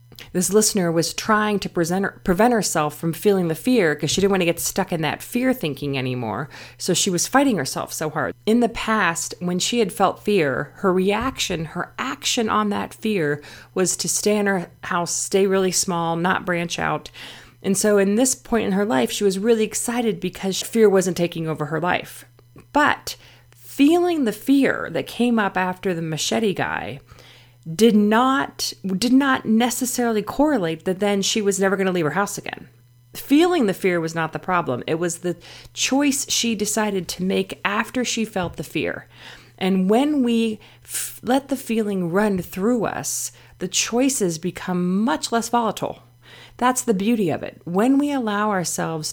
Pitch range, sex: 160-220 Hz, female